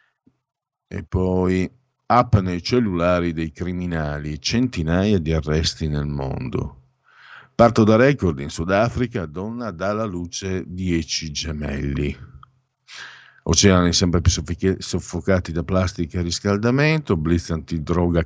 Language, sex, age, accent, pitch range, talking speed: Italian, male, 50-69, native, 80-115 Hz, 110 wpm